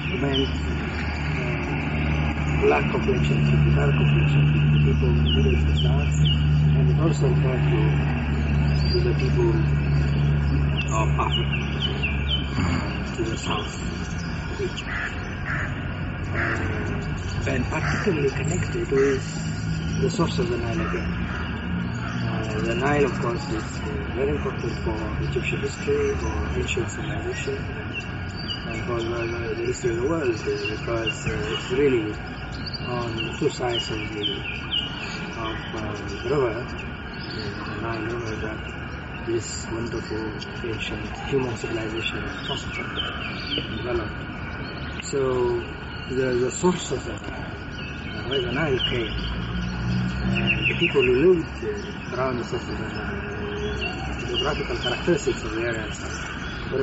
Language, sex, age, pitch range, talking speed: English, male, 40-59, 75-90 Hz, 125 wpm